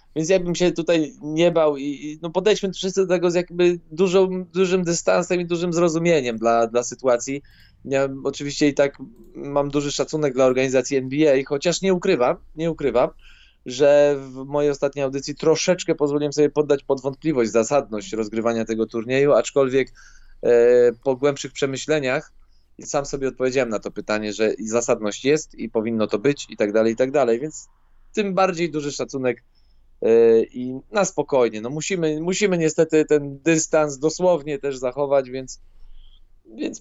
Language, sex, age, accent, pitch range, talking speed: Polish, male, 20-39, native, 130-170 Hz, 160 wpm